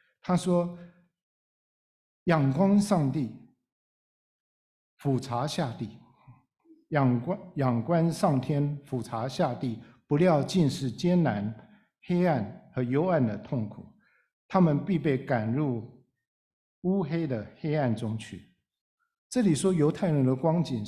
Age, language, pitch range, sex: 60-79, Chinese, 125-175 Hz, male